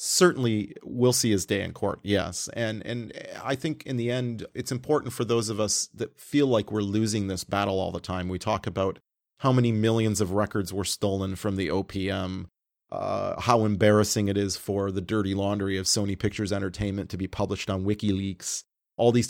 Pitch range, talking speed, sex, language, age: 100-120 Hz, 200 wpm, male, English, 30-49